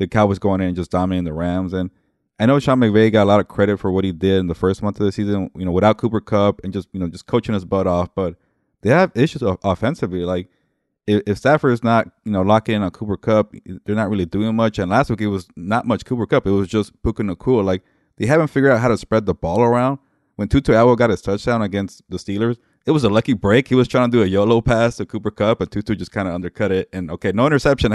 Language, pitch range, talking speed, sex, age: English, 95-115 Hz, 275 wpm, male, 20-39